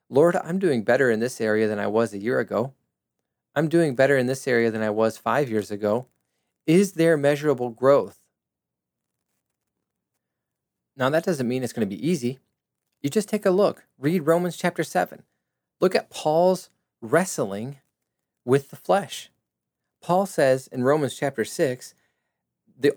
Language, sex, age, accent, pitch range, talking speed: English, male, 30-49, American, 115-155 Hz, 160 wpm